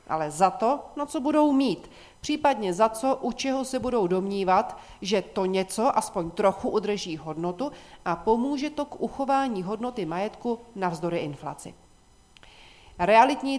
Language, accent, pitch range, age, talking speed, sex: Czech, native, 175-250 Hz, 40-59, 140 wpm, female